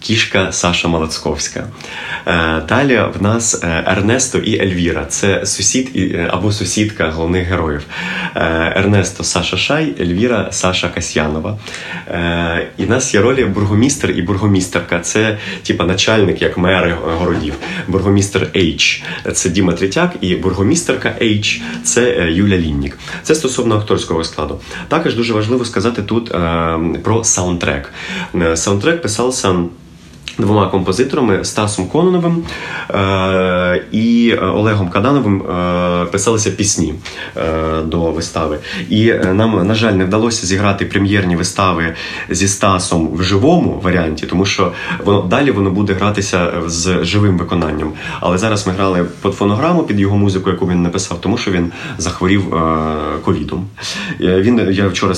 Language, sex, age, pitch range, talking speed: Ukrainian, male, 30-49, 85-105 Hz, 130 wpm